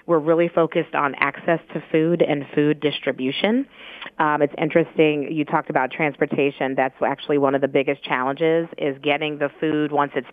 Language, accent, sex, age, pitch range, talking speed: English, American, female, 30-49, 145-165 Hz, 175 wpm